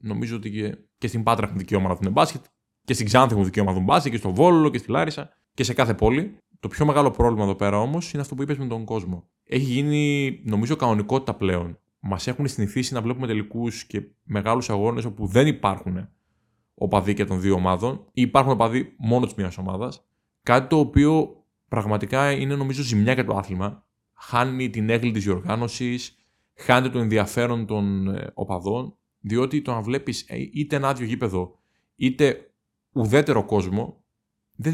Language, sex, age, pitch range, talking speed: Greek, male, 20-39, 100-130 Hz, 180 wpm